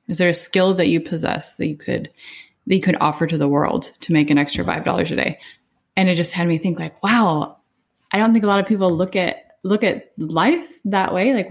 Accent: American